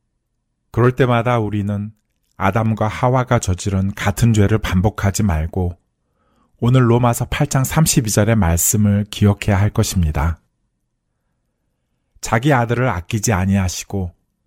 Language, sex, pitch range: Korean, male, 100-120 Hz